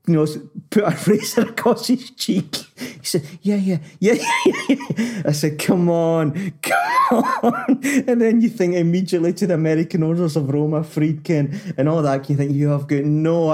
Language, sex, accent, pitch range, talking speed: English, male, British, 130-165 Hz, 195 wpm